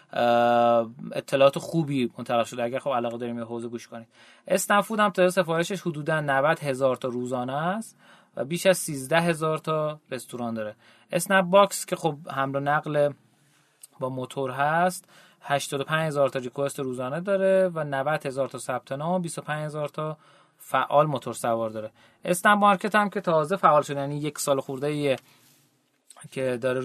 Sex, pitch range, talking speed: male, 130-175 Hz, 160 wpm